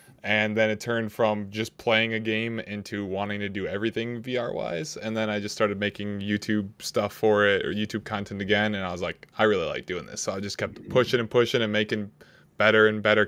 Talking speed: 225 wpm